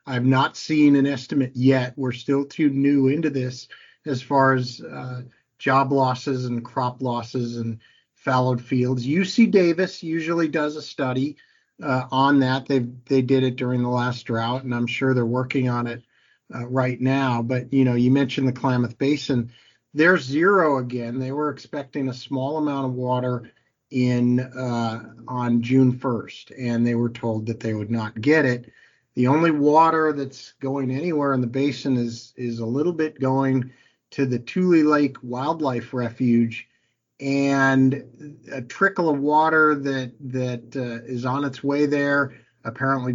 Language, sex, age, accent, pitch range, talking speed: English, male, 50-69, American, 125-140 Hz, 165 wpm